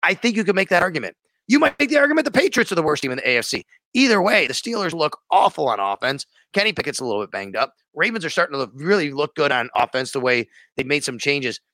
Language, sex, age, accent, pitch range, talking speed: English, male, 30-49, American, 135-215 Hz, 260 wpm